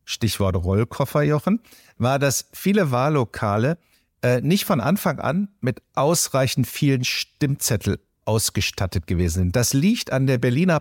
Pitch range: 110-150 Hz